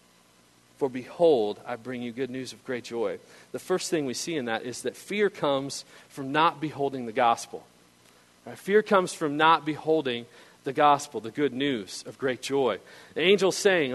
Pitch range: 120-175 Hz